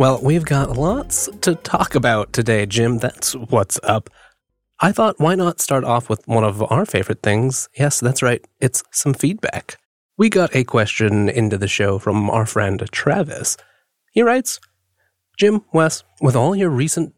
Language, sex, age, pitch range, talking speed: English, male, 30-49, 115-165 Hz, 170 wpm